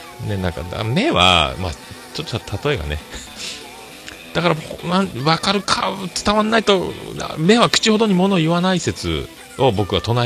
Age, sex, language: 40-59, male, Japanese